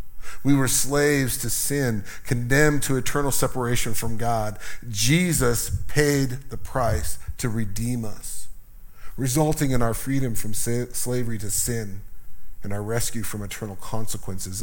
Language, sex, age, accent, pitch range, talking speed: English, male, 40-59, American, 105-140 Hz, 130 wpm